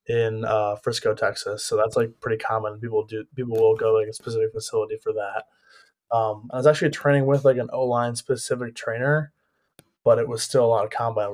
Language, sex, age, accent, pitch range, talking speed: English, male, 20-39, American, 115-145 Hz, 205 wpm